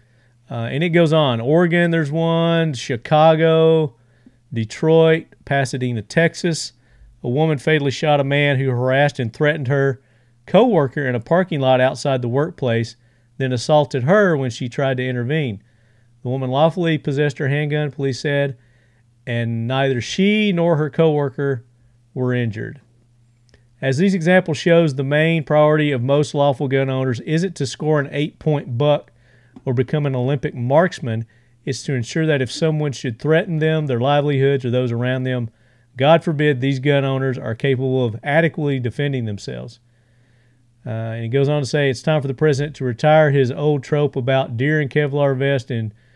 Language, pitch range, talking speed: English, 120-150 Hz, 165 wpm